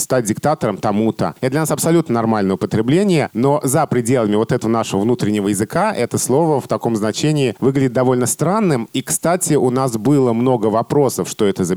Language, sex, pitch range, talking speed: Russian, male, 105-145 Hz, 180 wpm